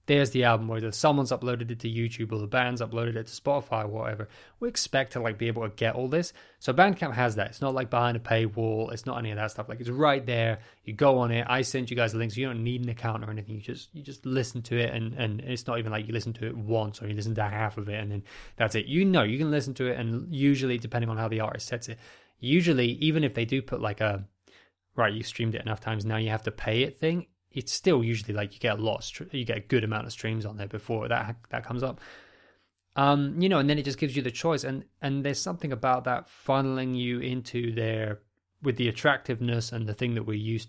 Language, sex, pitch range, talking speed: English, male, 110-130 Hz, 270 wpm